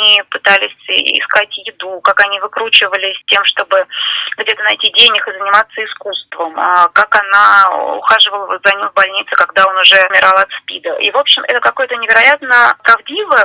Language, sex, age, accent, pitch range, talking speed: Russian, female, 20-39, native, 200-280 Hz, 150 wpm